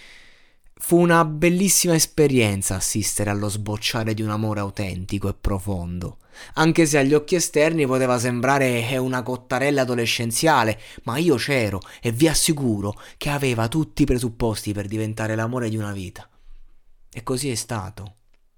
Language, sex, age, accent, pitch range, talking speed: Italian, male, 20-39, native, 100-115 Hz, 140 wpm